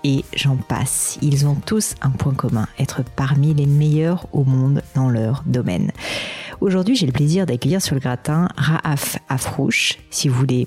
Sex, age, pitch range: female, 40-59, 135-175 Hz